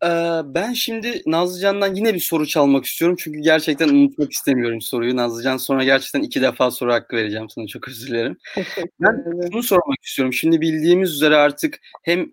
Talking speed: 165 wpm